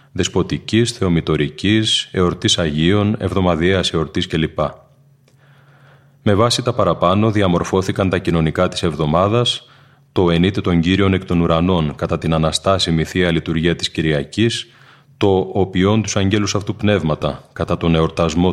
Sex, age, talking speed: male, 30-49, 125 wpm